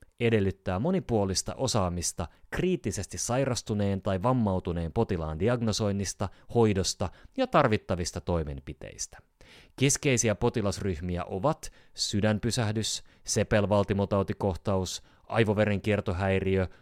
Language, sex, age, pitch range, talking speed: Finnish, male, 30-49, 90-115 Hz, 70 wpm